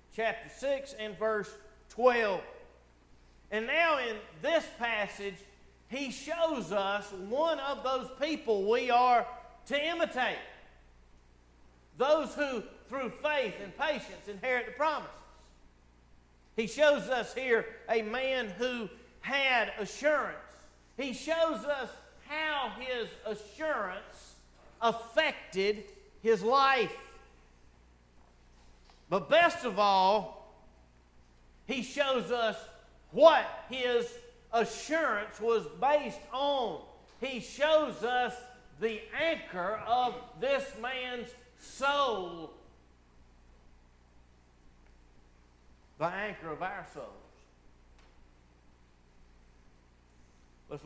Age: 50-69